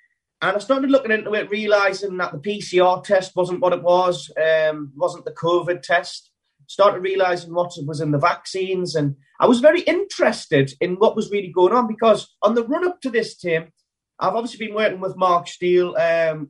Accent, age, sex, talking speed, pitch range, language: British, 30-49, male, 195 wpm, 165-215 Hz, English